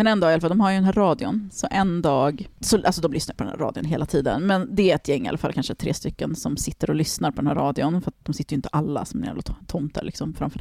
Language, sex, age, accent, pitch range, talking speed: English, female, 30-49, Swedish, 145-180 Hz, 310 wpm